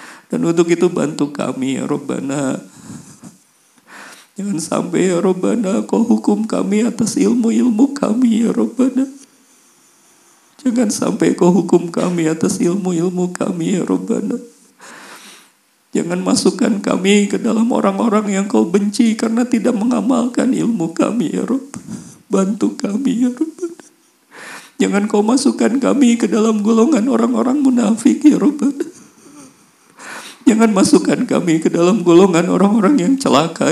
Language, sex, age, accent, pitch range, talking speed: Indonesian, male, 40-59, native, 190-255 Hz, 125 wpm